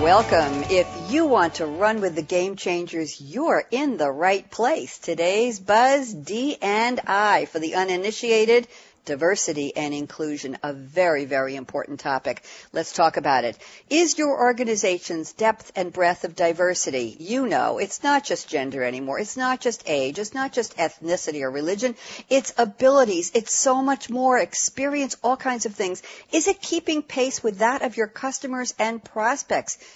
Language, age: English, 60-79